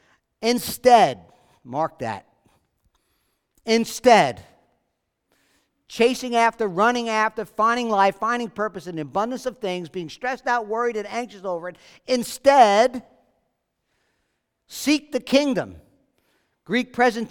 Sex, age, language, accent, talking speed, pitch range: male, 50-69, English, American, 105 wpm, 165-230 Hz